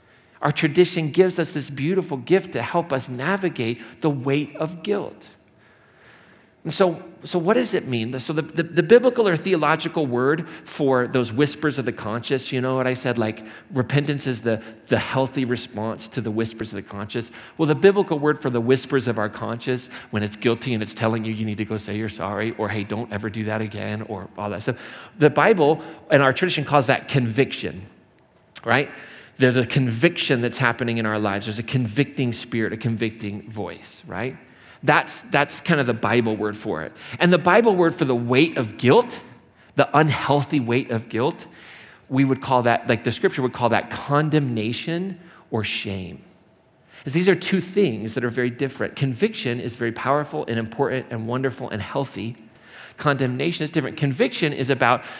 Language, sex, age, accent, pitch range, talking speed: English, male, 40-59, American, 115-155 Hz, 190 wpm